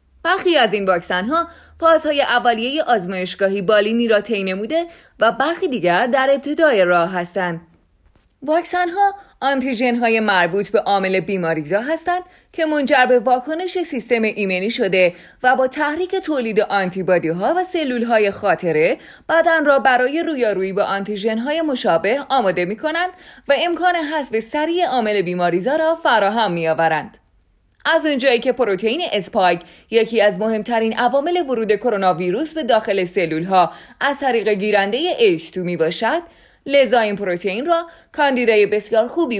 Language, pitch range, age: Persian, 195-310 Hz, 20-39